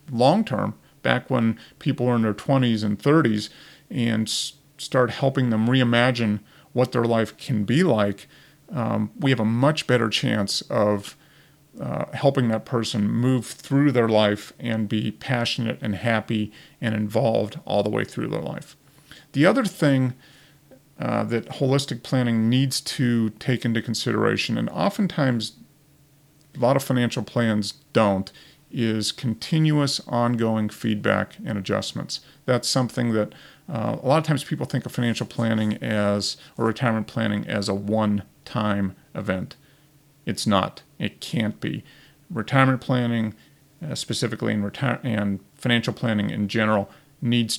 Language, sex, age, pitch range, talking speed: English, male, 40-59, 110-135 Hz, 145 wpm